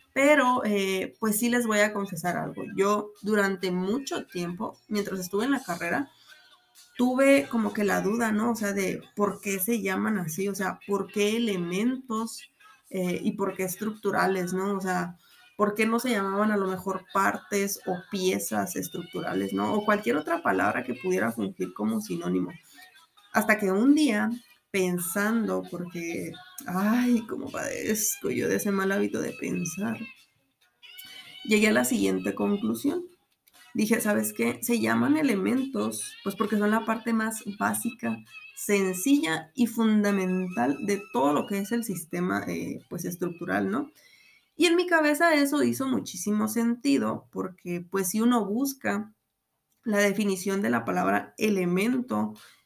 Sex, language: female, Spanish